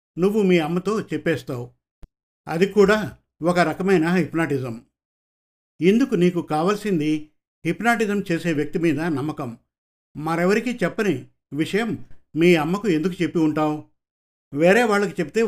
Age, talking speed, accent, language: 50-69, 110 wpm, native, Telugu